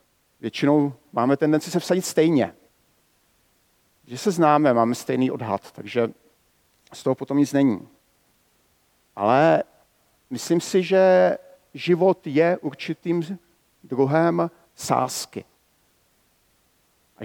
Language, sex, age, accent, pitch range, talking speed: Czech, male, 50-69, native, 130-170 Hz, 95 wpm